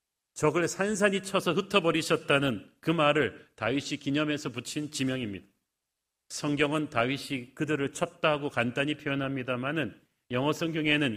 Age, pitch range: 40-59, 135-170 Hz